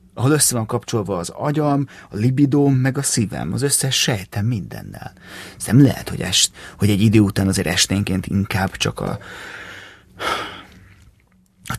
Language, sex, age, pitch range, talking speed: Hungarian, male, 30-49, 100-125 Hz, 155 wpm